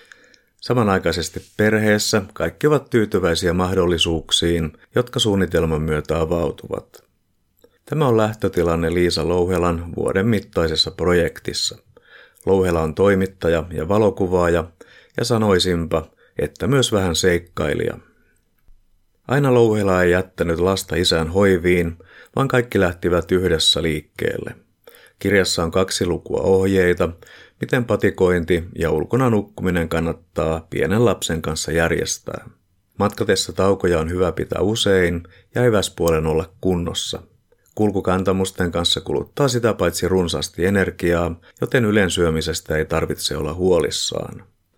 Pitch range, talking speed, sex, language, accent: 85-100 Hz, 105 wpm, male, Finnish, native